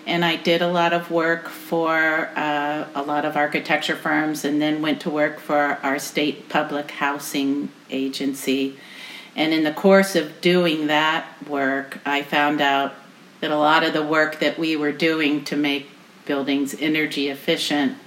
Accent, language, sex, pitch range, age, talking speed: American, English, female, 145-170 Hz, 50-69, 170 wpm